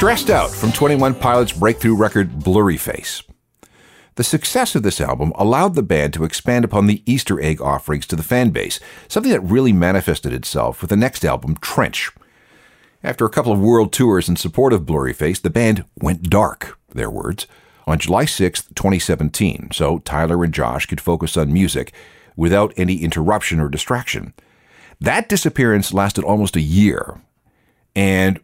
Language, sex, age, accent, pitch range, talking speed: English, male, 50-69, American, 85-115 Hz, 165 wpm